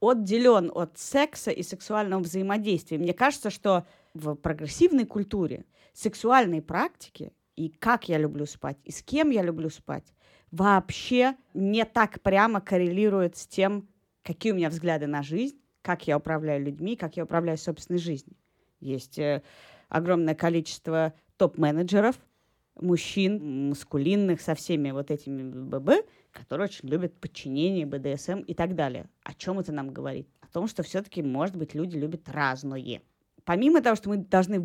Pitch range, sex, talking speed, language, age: 155-200 Hz, female, 150 wpm, Russian, 30-49